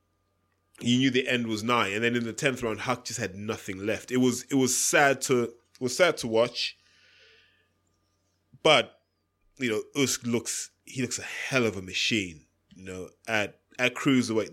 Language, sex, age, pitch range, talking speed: English, male, 20-39, 100-140 Hz, 180 wpm